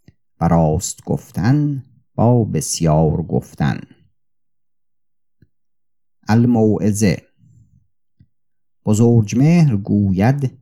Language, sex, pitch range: Persian, male, 85-105 Hz